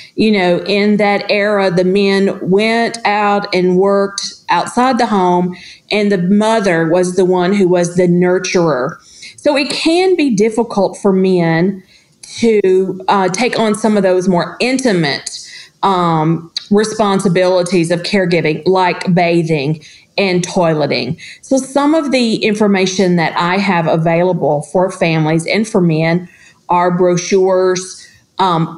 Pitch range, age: 175-205 Hz, 40-59